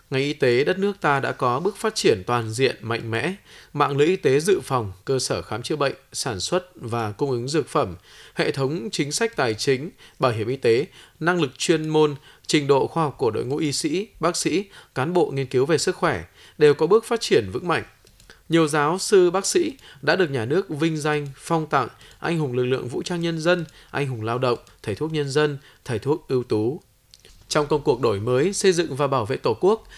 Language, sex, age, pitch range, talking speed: Vietnamese, male, 20-39, 125-170 Hz, 235 wpm